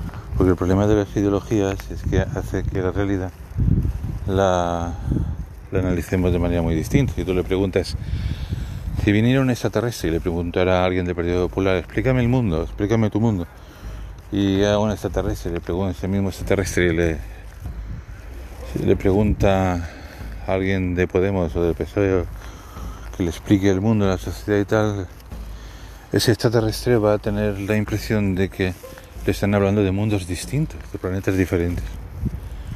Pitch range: 90-105 Hz